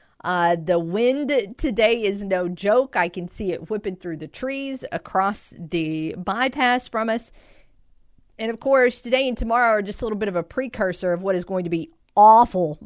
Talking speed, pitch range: 190 wpm, 175-230 Hz